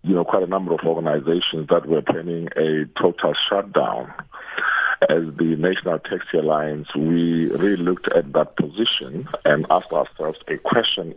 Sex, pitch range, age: male, 80-95 Hz, 50-69